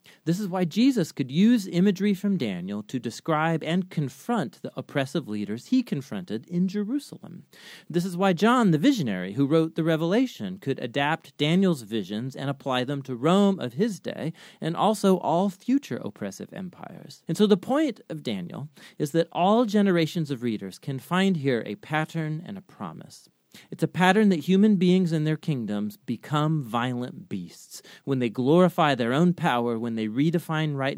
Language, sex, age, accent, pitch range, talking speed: English, male, 40-59, American, 125-185 Hz, 175 wpm